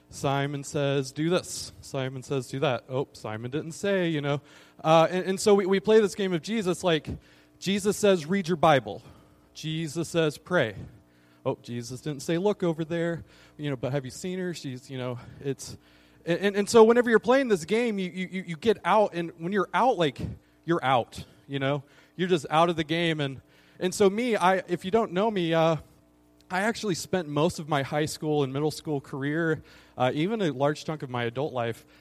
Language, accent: English, American